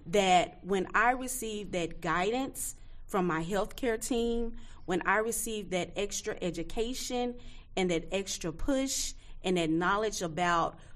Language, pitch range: English, 170-215 Hz